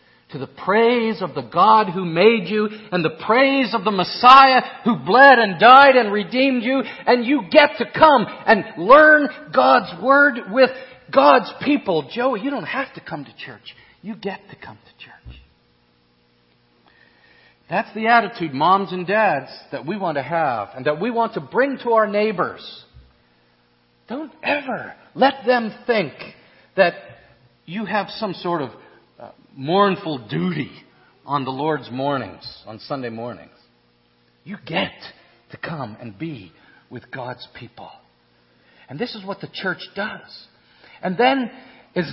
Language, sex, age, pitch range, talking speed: English, male, 50-69, 140-230 Hz, 150 wpm